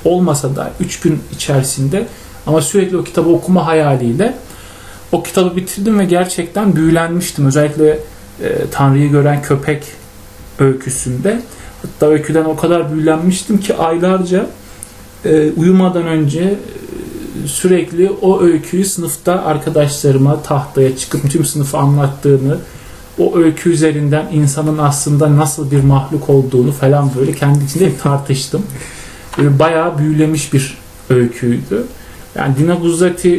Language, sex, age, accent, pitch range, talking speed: Turkish, male, 40-59, native, 140-175 Hz, 115 wpm